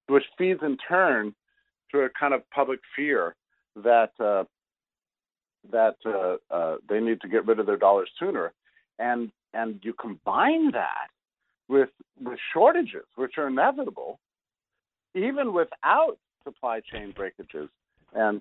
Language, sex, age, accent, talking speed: English, male, 50-69, American, 135 wpm